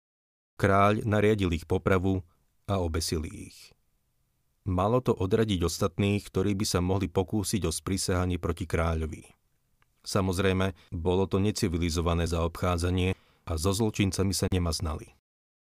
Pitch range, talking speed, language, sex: 85-105 Hz, 120 wpm, Slovak, male